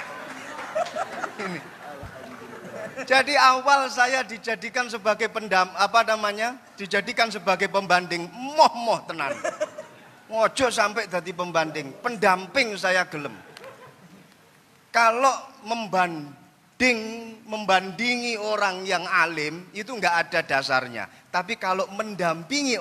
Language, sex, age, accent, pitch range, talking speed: Indonesian, male, 30-49, native, 195-245 Hz, 90 wpm